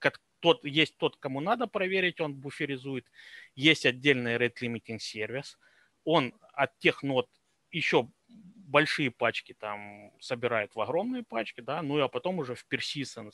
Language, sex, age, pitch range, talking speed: Russian, male, 30-49, 125-165 Hz, 145 wpm